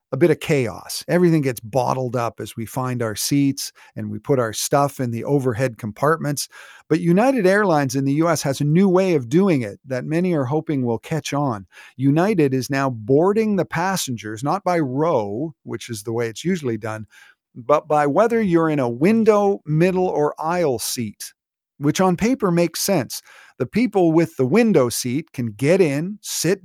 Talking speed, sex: 190 wpm, male